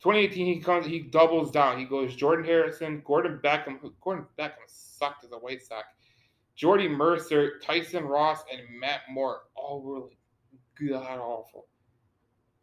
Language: English